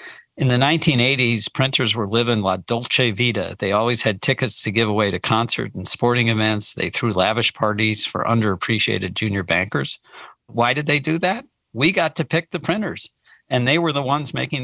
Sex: male